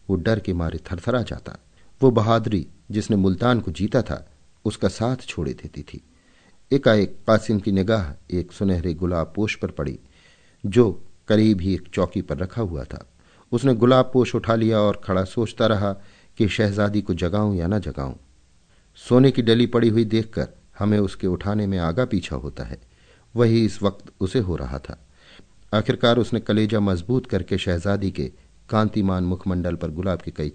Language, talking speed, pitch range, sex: Hindi, 100 wpm, 85-110 Hz, male